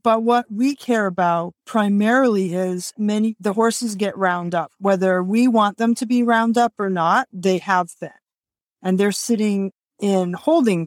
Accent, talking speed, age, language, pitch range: American, 170 wpm, 40-59, English, 180-220 Hz